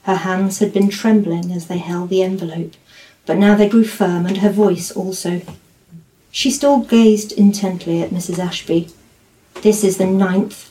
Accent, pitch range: British, 180-220 Hz